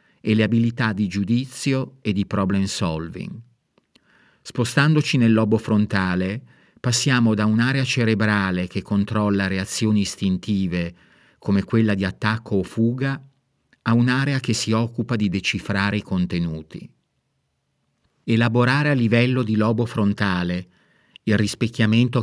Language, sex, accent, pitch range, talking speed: Italian, male, native, 100-120 Hz, 120 wpm